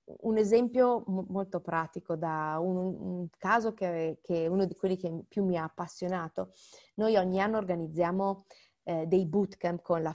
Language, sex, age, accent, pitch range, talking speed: Italian, female, 30-49, native, 170-205 Hz, 160 wpm